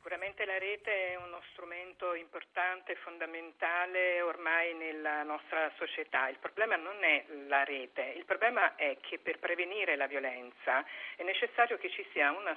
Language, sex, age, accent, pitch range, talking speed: Italian, female, 50-69, native, 160-255 Hz, 160 wpm